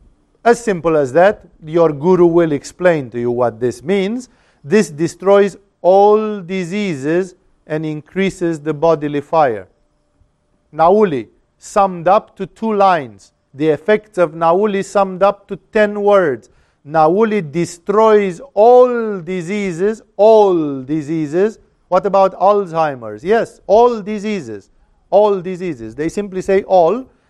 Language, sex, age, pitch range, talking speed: English, male, 50-69, 150-195 Hz, 120 wpm